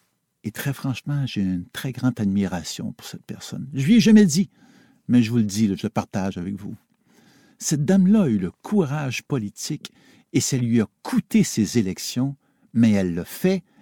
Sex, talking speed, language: male, 190 wpm, French